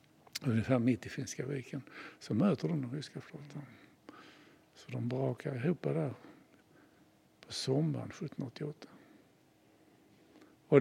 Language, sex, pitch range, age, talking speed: Swedish, male, 130-155 Hz, 60-79, 110 wpm